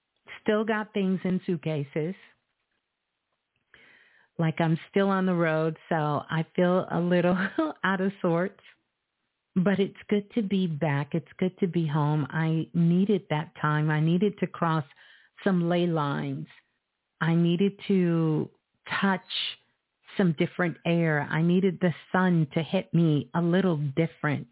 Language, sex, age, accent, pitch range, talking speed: English, female, 50-69, American, 155-185 Hz, 140 wpm